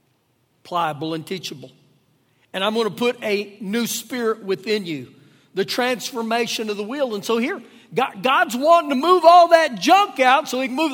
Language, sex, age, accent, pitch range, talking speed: English, male, 40-59, American, 210-295 Hz, 180 wpm